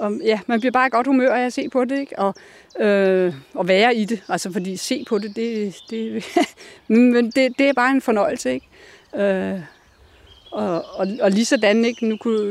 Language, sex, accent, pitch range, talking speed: Danish, female, native, 205-250 Hz, 185 wpm